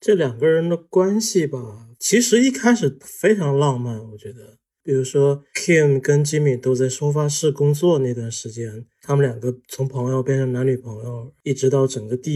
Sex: male